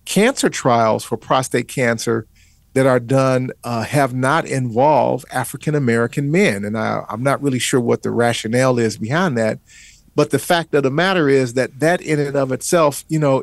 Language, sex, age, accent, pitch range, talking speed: English, male, 50-69, American, 125-150 Hz, 180 wpm